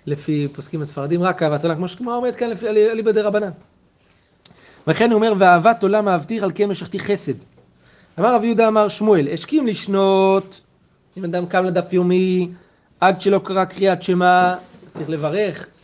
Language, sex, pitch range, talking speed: Hebrew, male, 155-210 Hz, 170 wpm